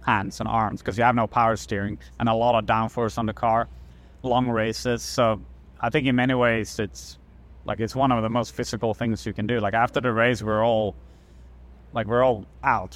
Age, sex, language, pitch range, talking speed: 30-49, male, English, 105-125 Hz, 220 wpm